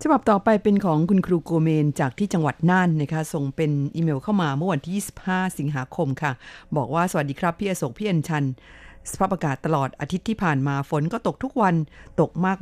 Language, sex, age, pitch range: Thai, female, 50-69, 150-190 Hz